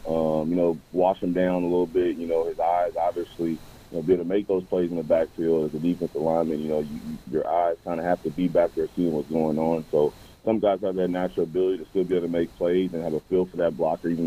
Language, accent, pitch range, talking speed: English, American, 80-90 Hz, 280 wpm